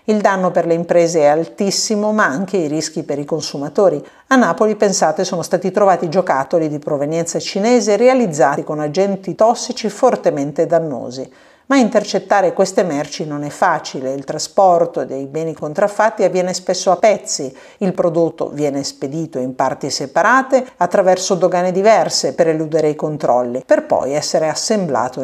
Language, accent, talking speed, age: Italian, native, 150 wpm, 50-69